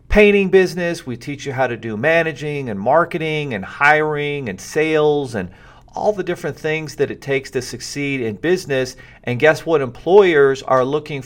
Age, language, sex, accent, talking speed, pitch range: 40-59, English, male, American, 175 wpm, 110-150 Hz